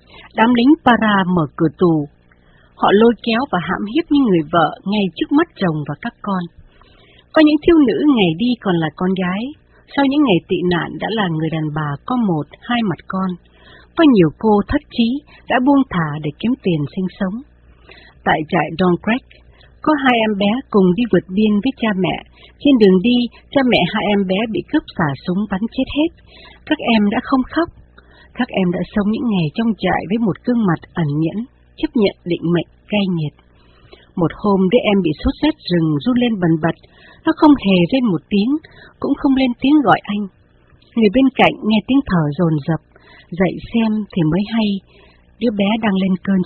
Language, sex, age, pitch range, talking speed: Vietnamese, female, 60-79, 175-245 Hz, 200 wpm